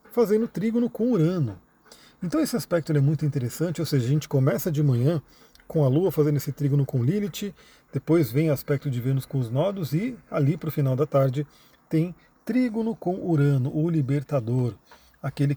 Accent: Brazilian